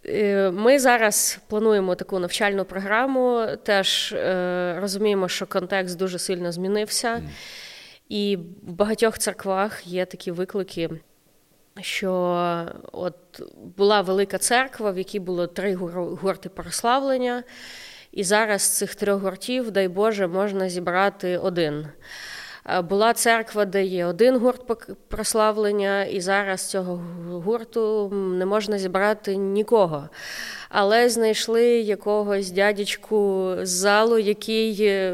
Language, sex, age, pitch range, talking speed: Ukrainian, female, 20-39, 185-215 Hz, 110 wpm